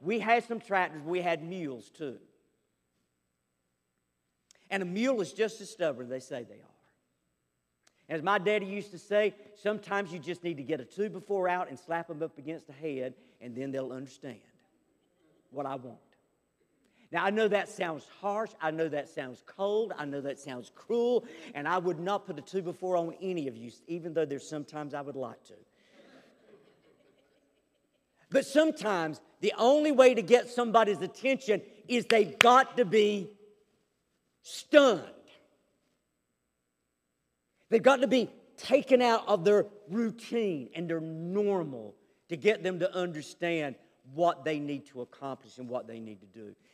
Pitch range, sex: 140-210 Hz, male